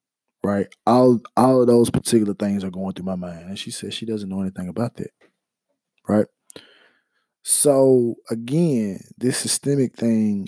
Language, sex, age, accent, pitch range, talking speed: English, male, 20-39, American, 100-125 Hz, 155 wpm